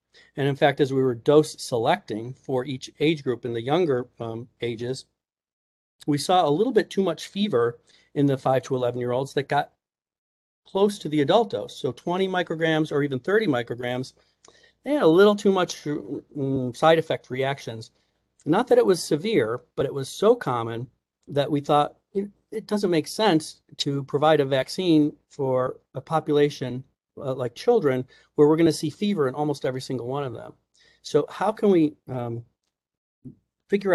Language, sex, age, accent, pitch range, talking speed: English, male, 40-59, American, 130-160 Hz, 180 wpm